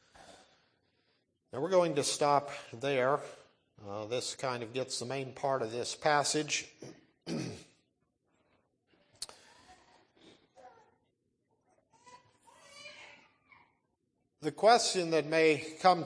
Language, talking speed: English, 80 wpm